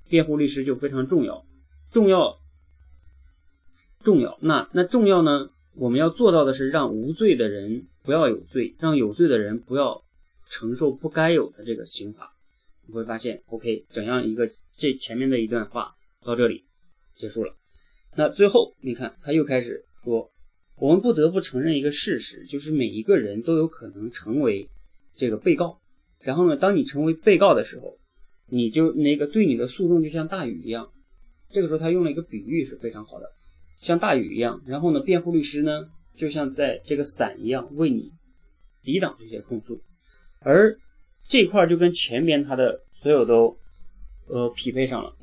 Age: 30-49